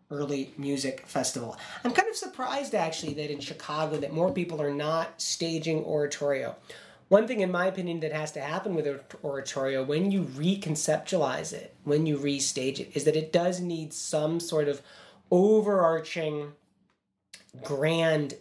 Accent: American